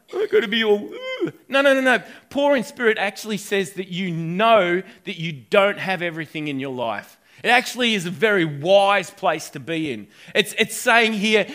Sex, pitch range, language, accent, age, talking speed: male, 160-220 Hz, English, Australian, 30-49, 205 wpm